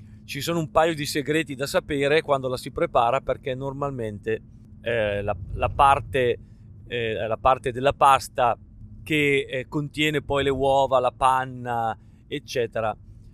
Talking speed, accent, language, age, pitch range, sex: 130 wpm, native, Italian, 40-59, 110-140 Hz, male